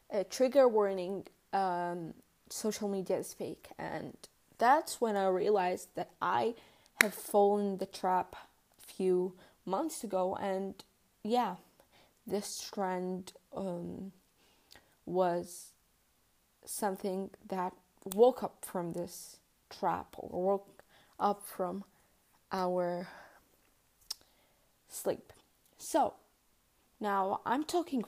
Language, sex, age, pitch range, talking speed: English, female, 20-39, 185-220 Hz, 100 wpm